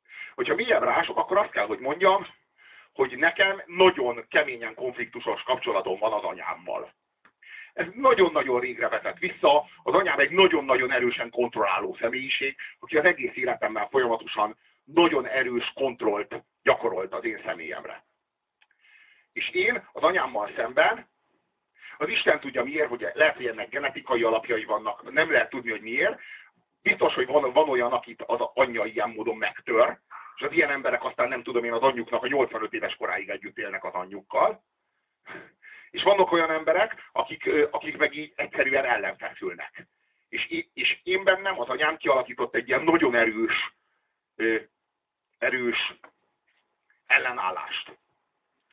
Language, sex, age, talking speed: Hungarian, male, 50-69, 140 wpm